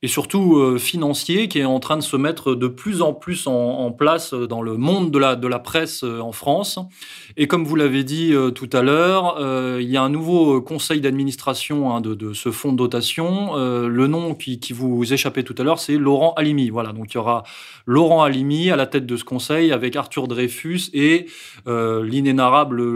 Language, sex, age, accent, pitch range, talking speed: French, male, 20-39, French, 120-150 Hz, 220 wpm